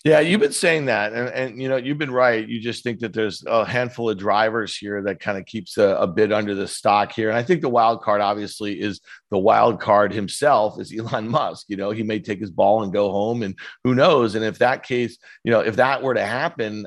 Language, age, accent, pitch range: English, 40-59, American, 105-125 Hz